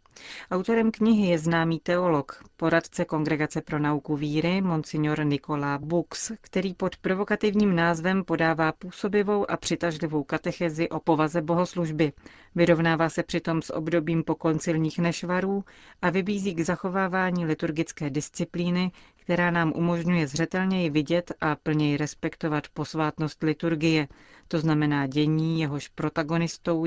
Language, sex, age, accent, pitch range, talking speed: Czech, female, 40-59, native, 155-175 Hz, 120 wpm